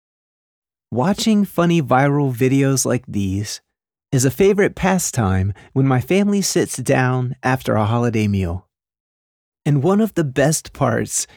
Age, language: 30-49, English